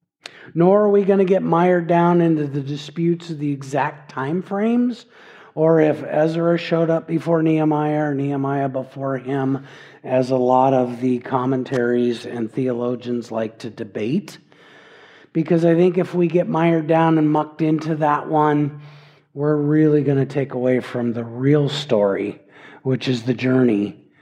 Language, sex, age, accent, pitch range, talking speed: English, male, 50-69, American, 135-175 Hz, 160 wpm